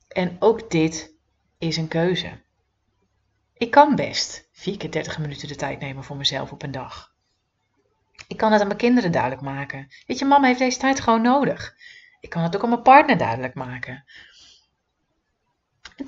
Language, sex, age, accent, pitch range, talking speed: Dutch, female, 30-49, Dutch, 155-240 Hz, 175 wpm